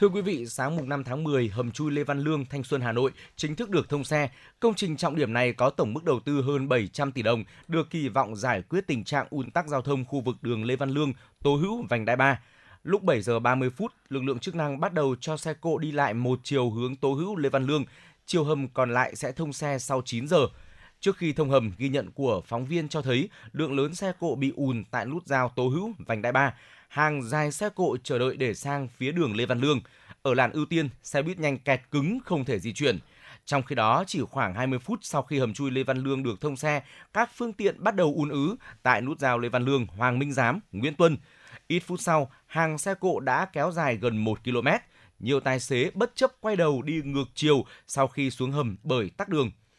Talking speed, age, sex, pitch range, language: 250 wpm, 20-39, male, 125-155 Hz, Vietnamese